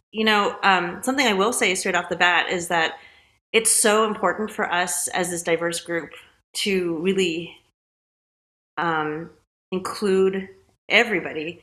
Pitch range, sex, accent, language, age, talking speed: 165-195 Hz, female, American, English, 30-49, 140 wpm